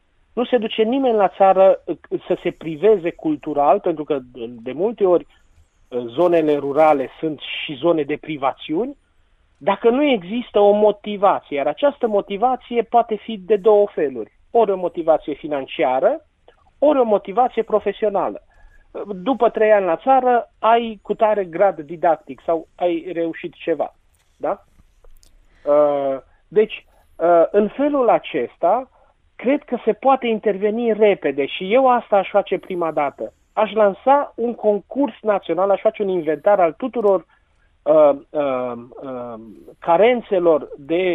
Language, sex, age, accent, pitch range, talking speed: Romanian, male, 40-59, native, 150-225 Hz, 130 wpm